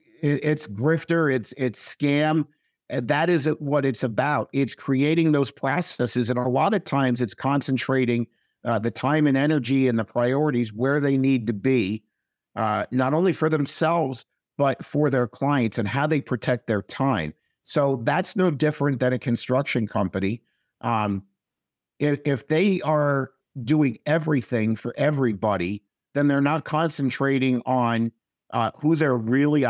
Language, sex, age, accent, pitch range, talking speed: English, male, 50-69, American, 120-150 Hz, 155 wpm